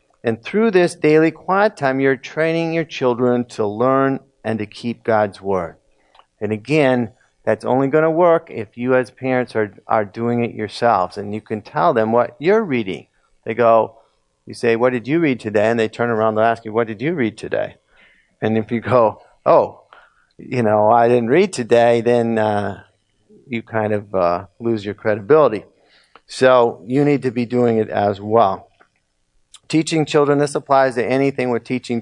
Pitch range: 110-140 Hz